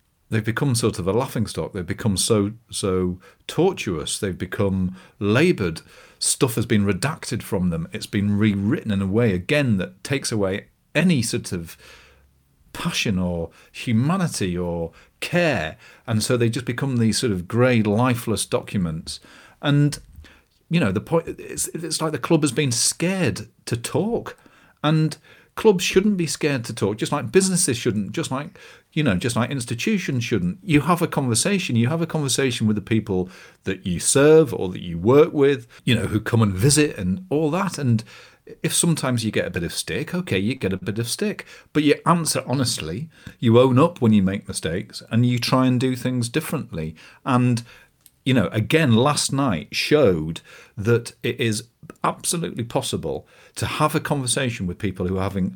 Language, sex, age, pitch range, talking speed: English, male, 40-59, 105-150 Hz, 180 wpm